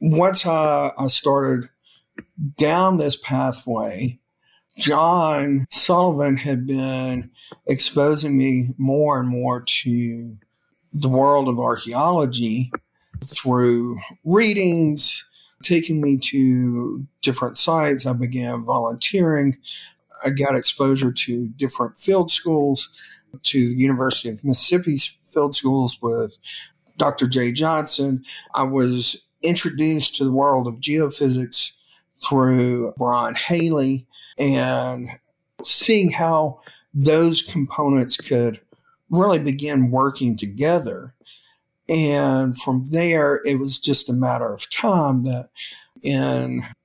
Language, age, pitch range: English, 40-59, 125-150 Hz